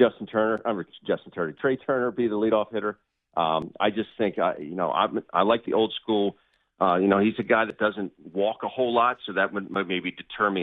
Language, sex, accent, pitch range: English, male, American, 95-115 Hz